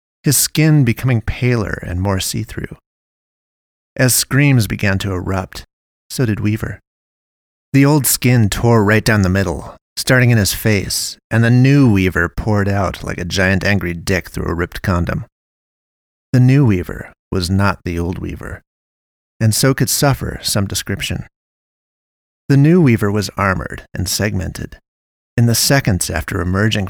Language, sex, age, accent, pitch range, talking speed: English, male, 30-49, American, 90-120 Hz, 150 wpm